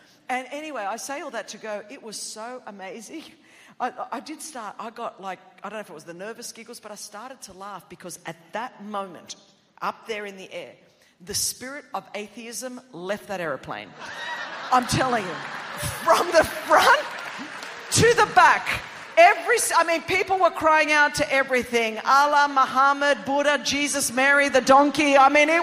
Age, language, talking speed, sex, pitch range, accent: 50-69, English, 180 wpm, female, 195-285 Hz, Australian